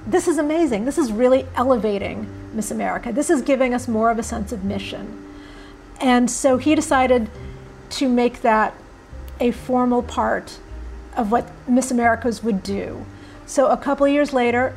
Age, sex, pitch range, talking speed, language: 40-59, female, 220-255 Hz, 165 wpm, English